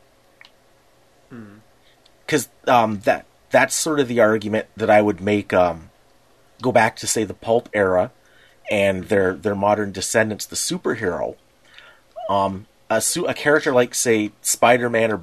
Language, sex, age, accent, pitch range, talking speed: English, male, 30-49, American, 100-120 Hz, 140 wpm